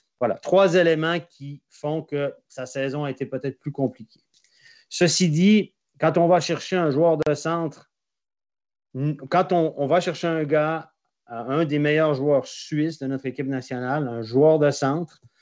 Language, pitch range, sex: French, 135-165 Hz, male